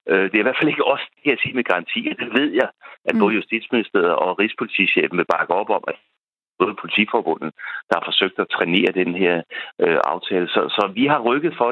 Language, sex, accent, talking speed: Danish, male, native, 220 wpm